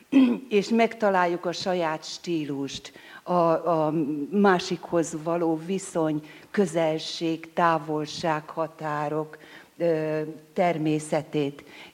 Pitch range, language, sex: 155-180 Hz, Hungarian, female